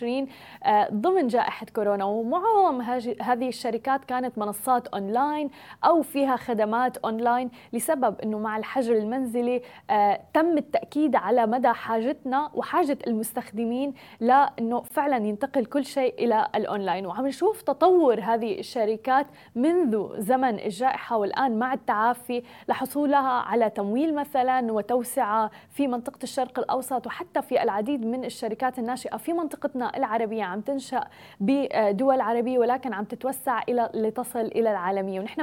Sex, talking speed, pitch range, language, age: female, 125 wpm, 220-270 Hz, Arabic, 20-39